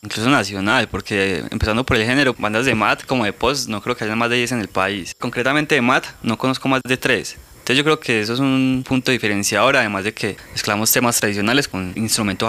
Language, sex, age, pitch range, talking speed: Spanish, male, 20-39, 105-125 Hz, 230 wpm